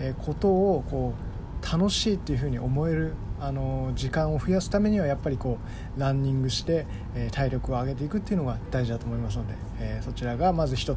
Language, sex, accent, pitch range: Japanese, male, native, 115-150 Hz